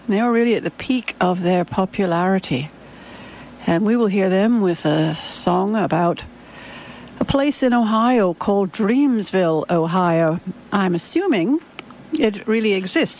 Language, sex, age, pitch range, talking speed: English, female, 60-79, 175-230 Hz, 135 wpm